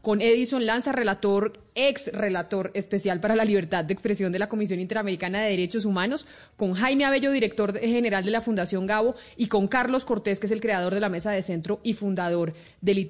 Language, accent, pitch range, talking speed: Spanish, Colombian, 195-240 Hz, 200 wpm